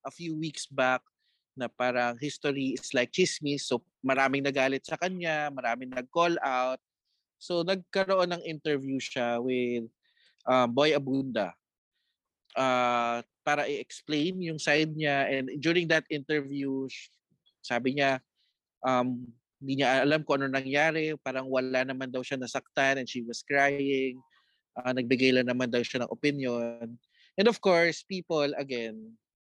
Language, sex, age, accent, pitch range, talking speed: Filipino, male, 20-39, native, 125-155 Hz, 140 wpm